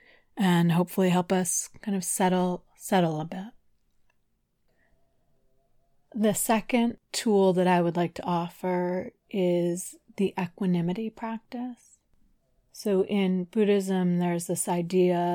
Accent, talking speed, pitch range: American, 115 wpm, 170-190 Hz